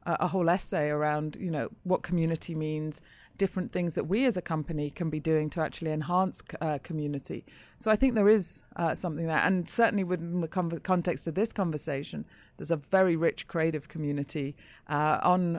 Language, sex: English, female